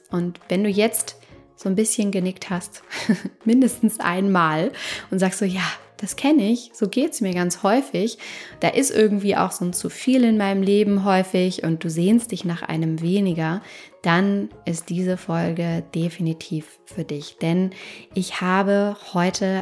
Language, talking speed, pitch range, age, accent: German, 165 wpm, 170-210 Hz, 20-39, German